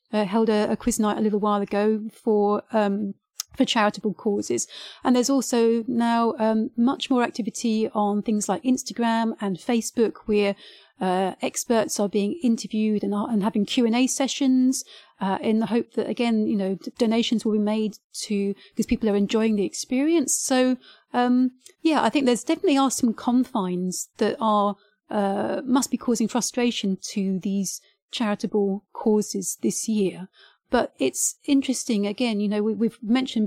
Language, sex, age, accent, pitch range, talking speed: English, female, 30-49, British, 210-250 Hz, 170 wpm